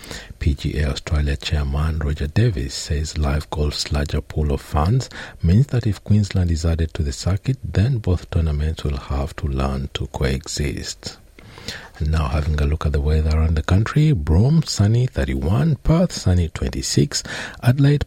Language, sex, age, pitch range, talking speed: English, male, 60-79, 75-115 Hz, 160 wpm